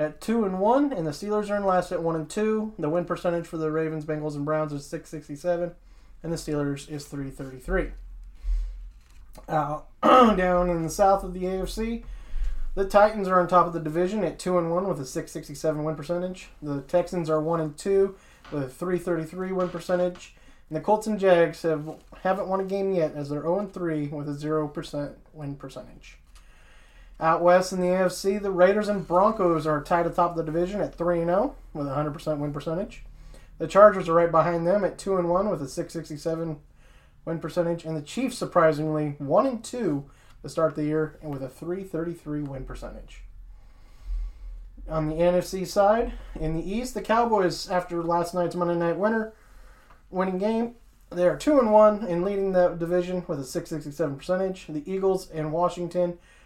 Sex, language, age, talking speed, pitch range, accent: male, English, 30-49, 180 wpm, 155-185 Hz, American